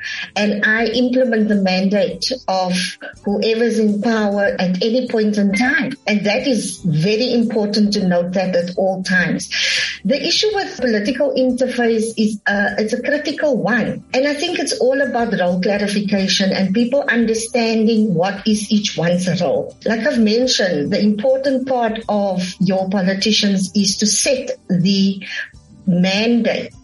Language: English